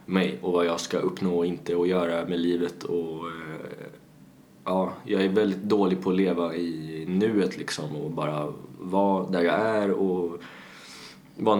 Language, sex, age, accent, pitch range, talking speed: Swedish, male, 20-39, native, 85-95 Hz, 165 wpm